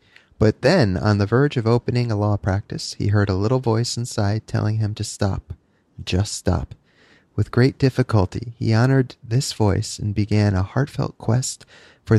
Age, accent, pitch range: 30-49, American, 105-125 Hz